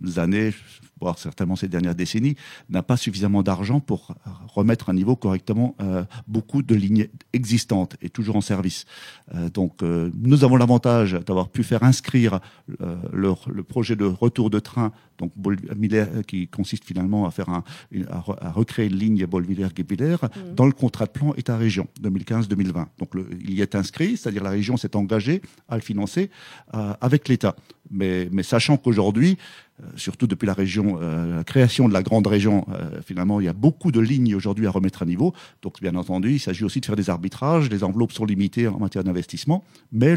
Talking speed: 185 wpm